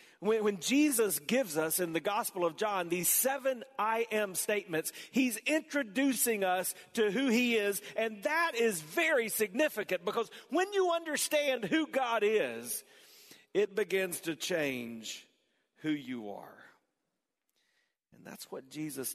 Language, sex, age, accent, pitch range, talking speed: English, male, 40-59, American, 150-215 Hz, 140 wpm